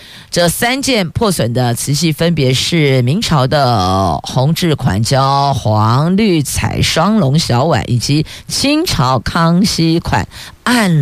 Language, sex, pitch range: Chinese, female, 135-180 Hz